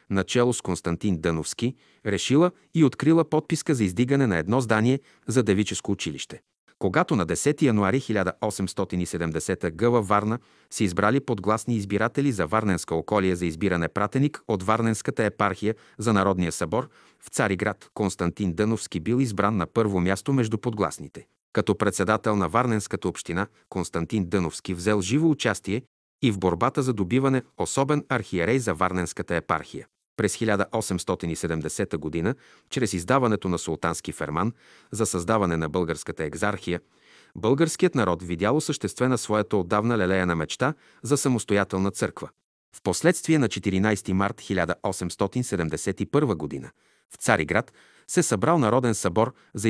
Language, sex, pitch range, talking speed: Bulgarian, male, 95-120 Hz, 130 wpm